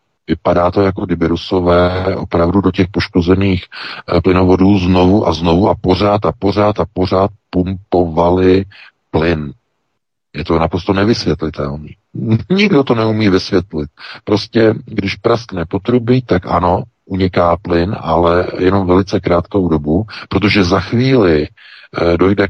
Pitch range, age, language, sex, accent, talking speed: 85-100 Hz, 50-69, Czech, male, native, 125 wpm